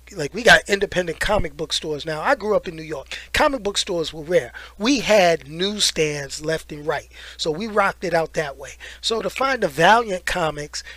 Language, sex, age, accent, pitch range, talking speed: English, male, 30-49, American, 155-205 Hz, 210 wpm